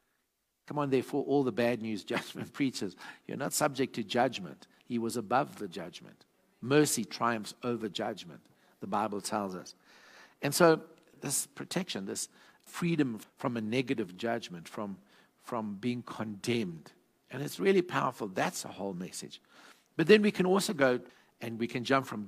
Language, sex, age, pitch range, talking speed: English, male, 60-79, 110-145 Hz, 160 wpm